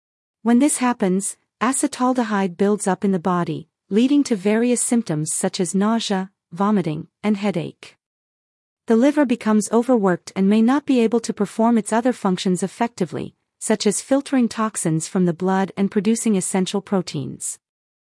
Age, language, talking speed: 40-59, English, 150 wpm